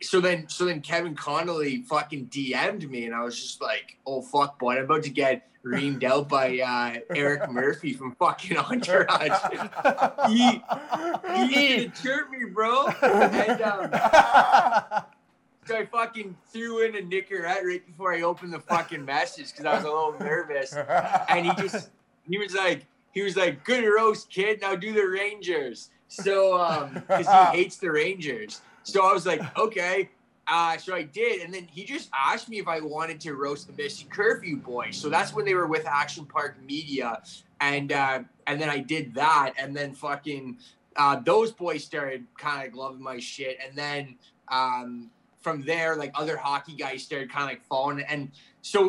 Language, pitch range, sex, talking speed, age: English, 140-200 Hz, male, 185 wpm, 20-39